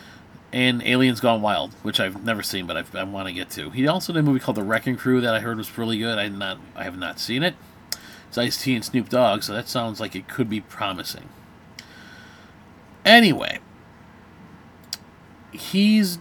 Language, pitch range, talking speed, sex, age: English, 115-165 Hz, 195 wpm, male, 40-59